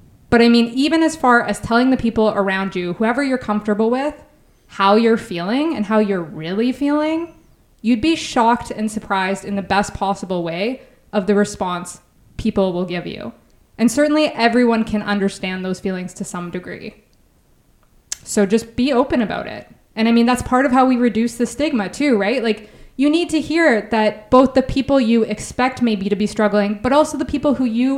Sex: female